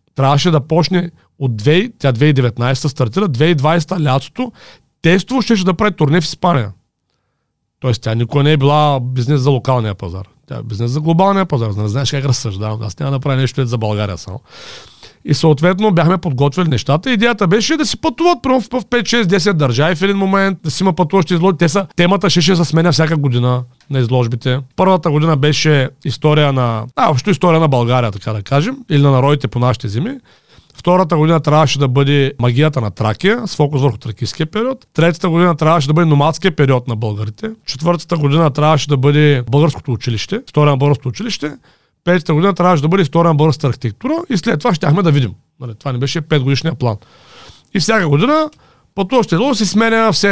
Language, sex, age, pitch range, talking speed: Bulgarian, male, 40-59, 130-190 Hz, 185 wpm